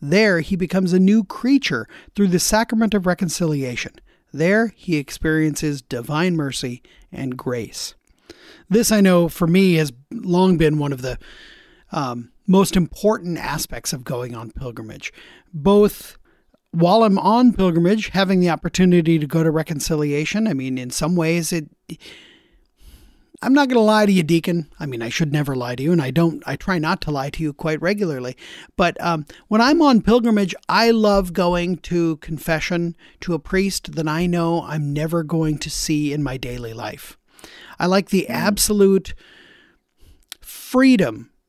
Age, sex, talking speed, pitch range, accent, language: 40-59, male, 165 wpm, 155-195 Hz, American, English